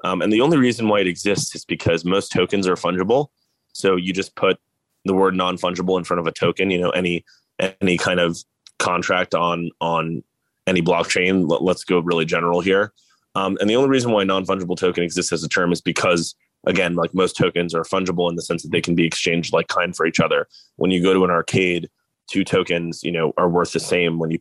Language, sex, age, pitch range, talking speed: English, male, 20-39, 85-95 Hz, 225 wpm